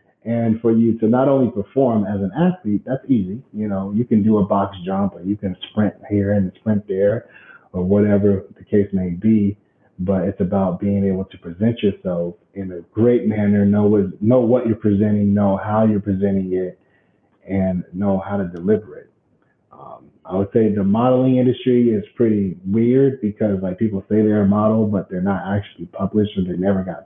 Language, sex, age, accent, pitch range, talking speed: English, male, 30-49, American, 95-115 Hz, 195 wpm